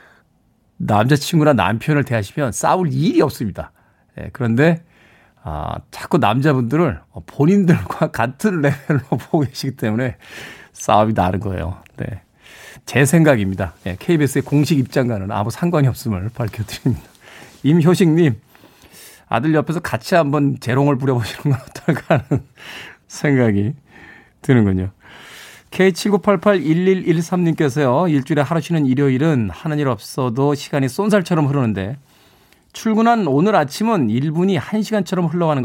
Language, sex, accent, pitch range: Korean, male, native, 120-170 Hz